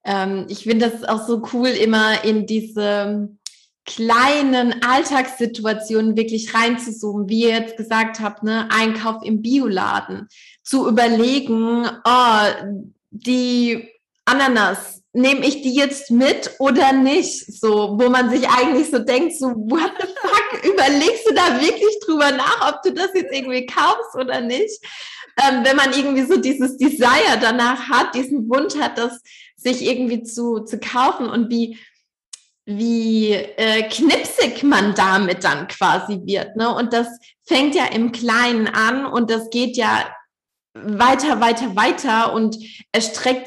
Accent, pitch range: German, 220-255 Hz